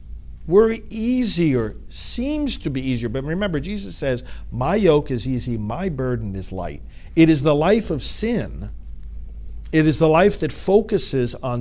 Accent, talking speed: American, 160 wpm